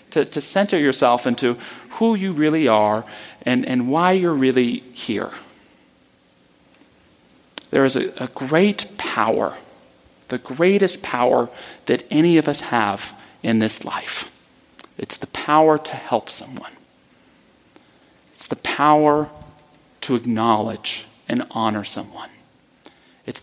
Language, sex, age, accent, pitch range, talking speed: English, male, 40-59, American, 115-150 Hz, 120 wpm